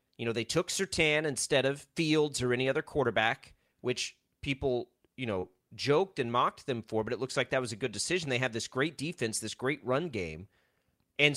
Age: 30-49